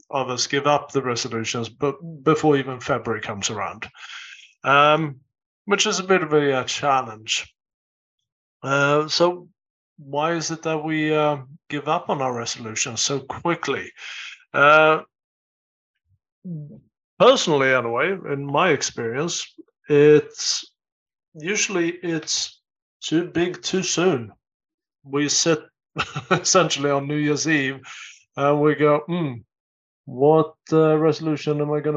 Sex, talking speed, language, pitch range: male, 115 wpm, English, 135-160 Hz